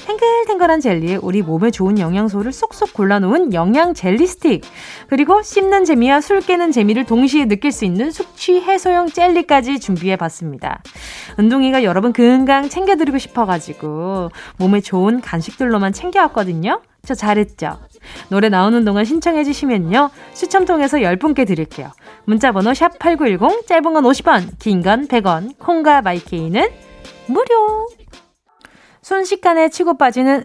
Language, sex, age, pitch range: Korean, female, 20-39, 195-320 Hz